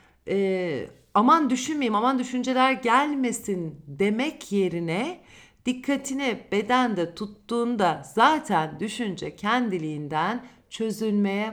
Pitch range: 175-250 Hz